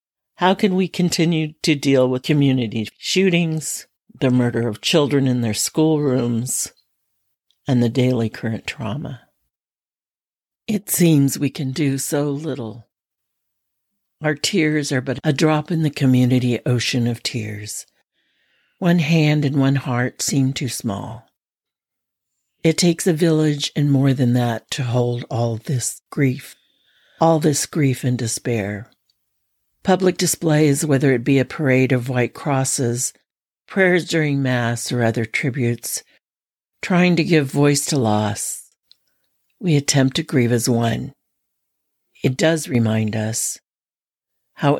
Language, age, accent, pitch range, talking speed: English, 60-79, American, 125-155 Hz, 135 wpm